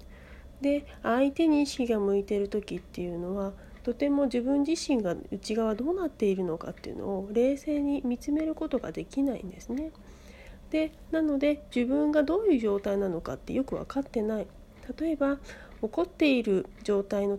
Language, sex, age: Japanese, female, 40-59